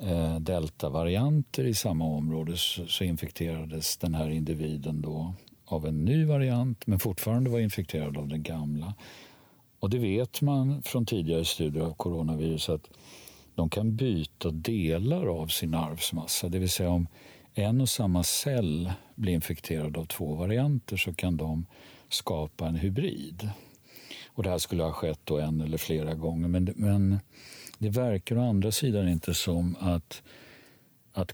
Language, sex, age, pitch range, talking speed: Swedish, male, 50-69, 80-105 Hz, 150 wpm